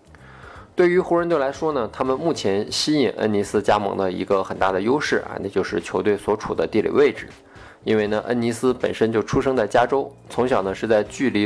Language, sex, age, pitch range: Chinese, male, 20-39, 95-125 Hz